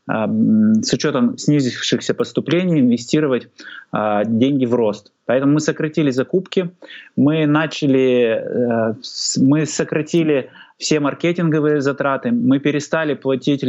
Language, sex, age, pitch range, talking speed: Russian, male, 20-39, 115-150 Hz, 110 wpm